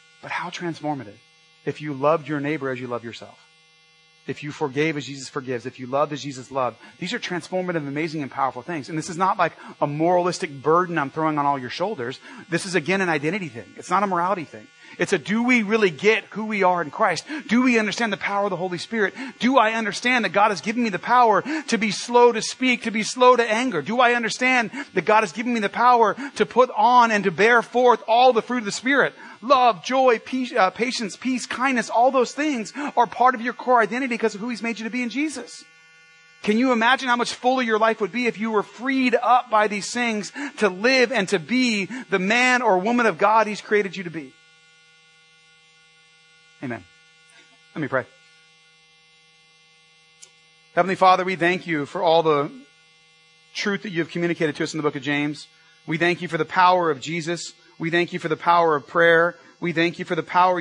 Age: 30-49